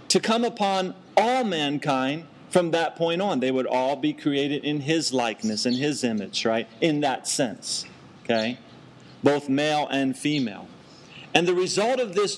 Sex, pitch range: male, 145-195 Hz